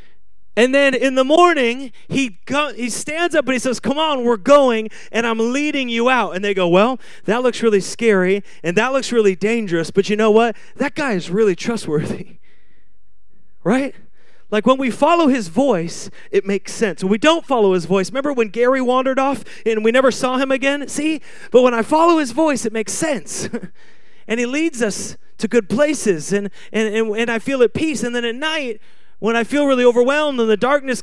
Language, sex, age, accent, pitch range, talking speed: English, male, 30-49, American, 205-265 Hz, 210 wpm